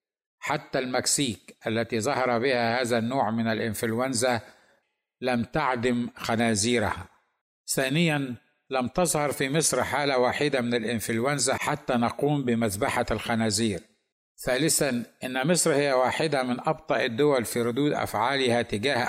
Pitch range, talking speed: 115-145 Hz, 115 wpm